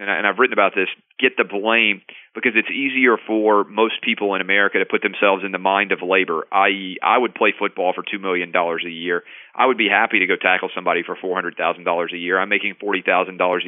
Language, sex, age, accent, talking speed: English, male, 40-59, American, 215 wpm